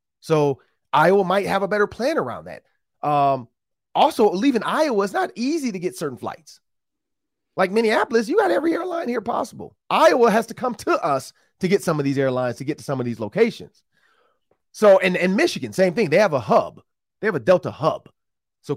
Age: 30-49